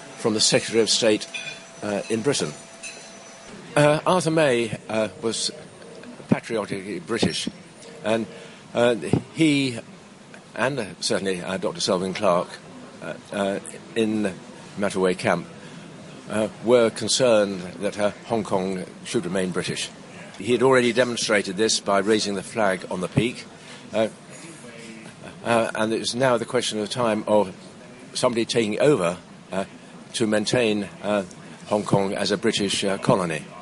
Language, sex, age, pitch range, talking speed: English, male, 60-79, 105-125 Hz, 140 wpm